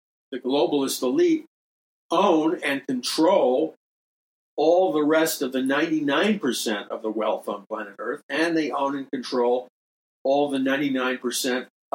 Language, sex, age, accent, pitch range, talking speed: English, male, 50-69, American, 125-165 Hz, 130 wpm